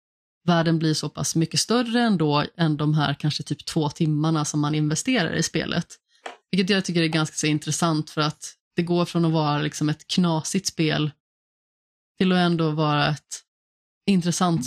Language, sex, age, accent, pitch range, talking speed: Swedish, female, 30-49, native, 150-180 Hz, 175 wpm